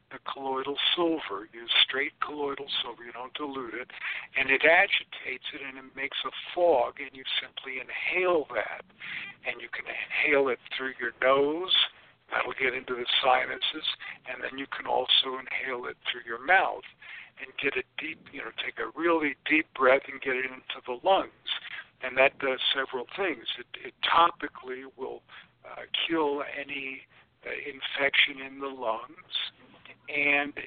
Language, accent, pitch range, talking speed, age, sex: English, American, 130-150 Hz, 165 wpm, 50-69, male